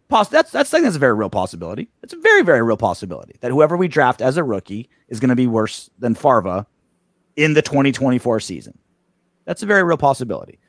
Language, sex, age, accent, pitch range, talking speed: English, male, 30-49, American, 130-180 Hz, 210 wpm